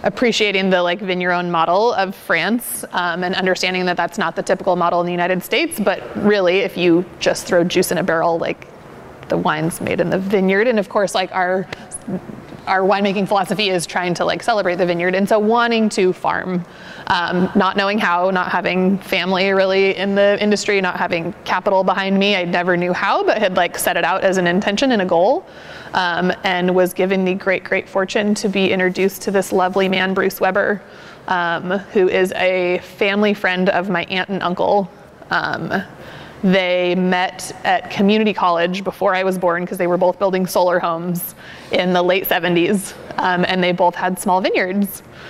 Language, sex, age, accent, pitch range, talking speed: English, female, 20-39, American, 180-195 Hz, 190 wpm